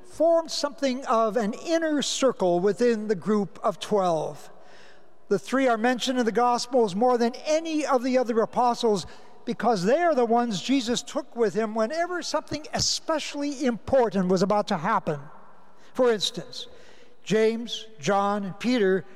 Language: English